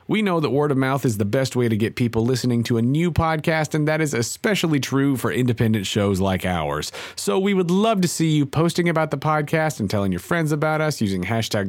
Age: 40-59